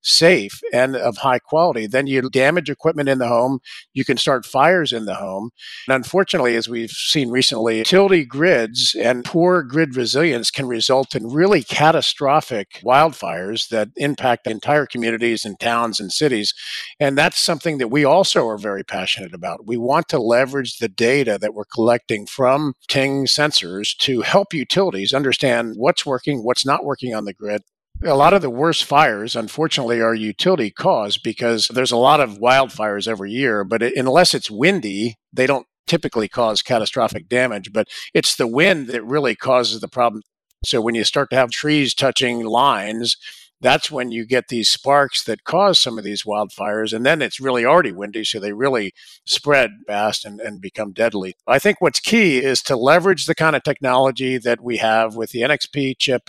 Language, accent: English, American